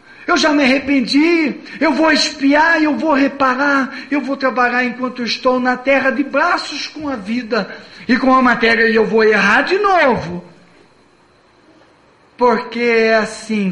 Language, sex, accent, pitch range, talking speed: Portuguese, male, Brazilian, 185-265 Hz, 155 wpm